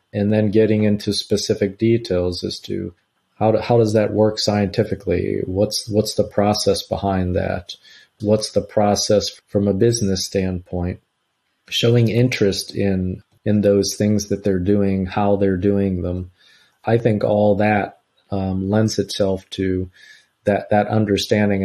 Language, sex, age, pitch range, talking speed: English, male, 40-59, 95-105 Hz, 145 wpm